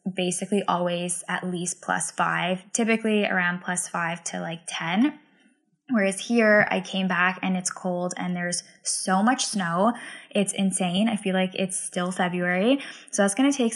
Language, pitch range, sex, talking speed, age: English, 180-200 Hz, female, 165 wpm, 10-29